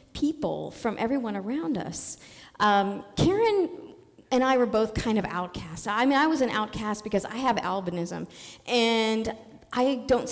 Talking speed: 155 wpm